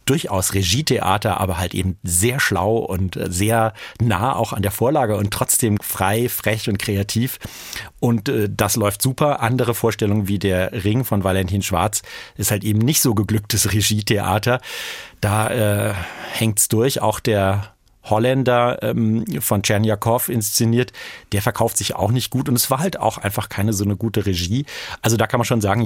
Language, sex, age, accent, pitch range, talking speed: German, male, 40-59, German, 100-115 Hz, 170 wpm